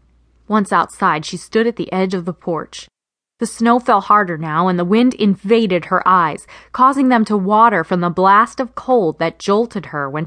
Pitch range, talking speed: 165-220 Hz, 200 wpm